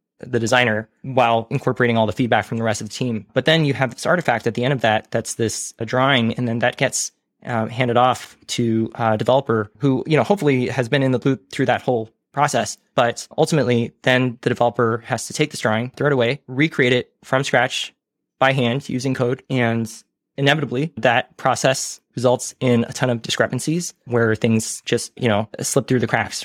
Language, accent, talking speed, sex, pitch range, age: English, American, 205 wpm, male, 115-130 Hz, 20-39